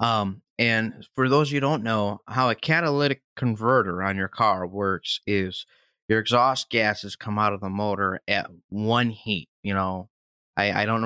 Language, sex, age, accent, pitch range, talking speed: English, male, 20-39, American, 100-130 Hz, 185 wpm